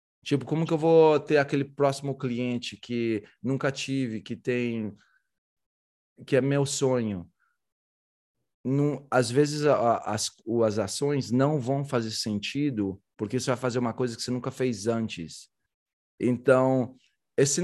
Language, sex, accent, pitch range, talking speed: English, male, Brazilian, 110-145 Hz, 140 wpm